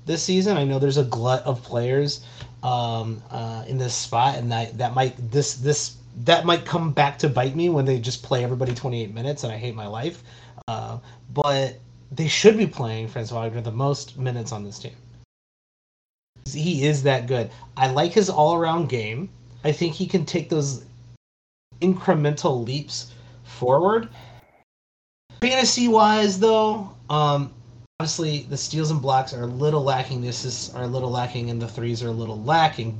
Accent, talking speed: American, 180 wpm